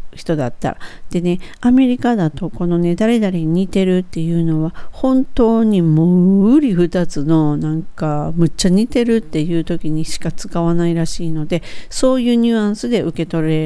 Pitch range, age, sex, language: 155-195 Hz, 50-69, female, Japanese